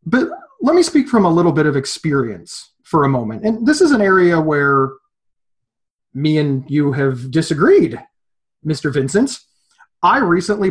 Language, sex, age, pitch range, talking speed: English, male, 30-49, 145-190 Hz, 155 wpm